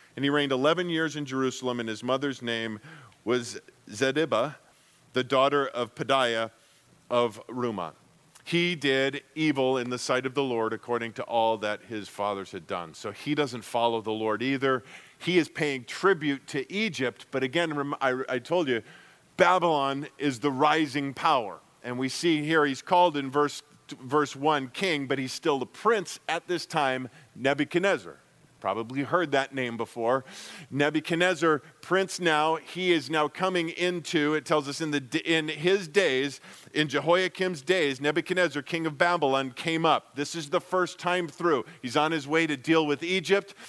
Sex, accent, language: male, American, English